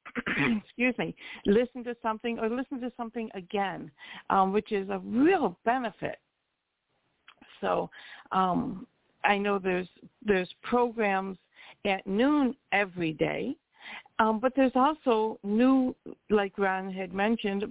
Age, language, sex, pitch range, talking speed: 60-79, English, female, 185-235 Hz, 120 wpm